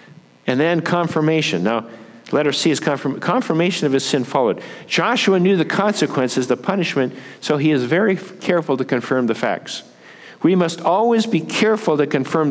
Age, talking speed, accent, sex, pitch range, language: 50-69, 165 wpm, American, male, 130-175 Hz, English